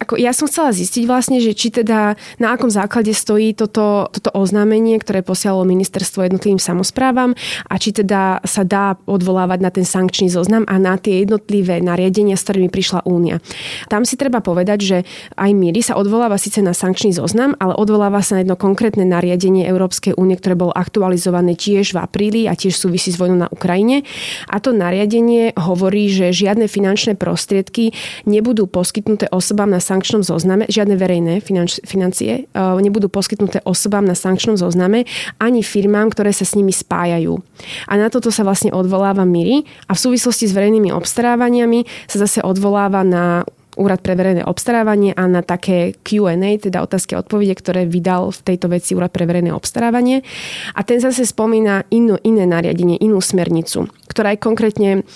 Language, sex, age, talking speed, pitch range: Slovak, female, 20-39, 170 wpm, 185-215 Hz